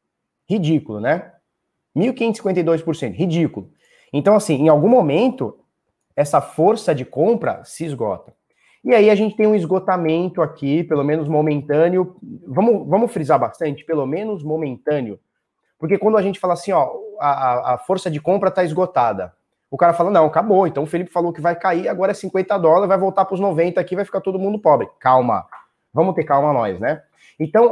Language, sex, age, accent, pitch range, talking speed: Portuguese, male, 20-39, Brazilian, 150-195 Hz, 175 wpm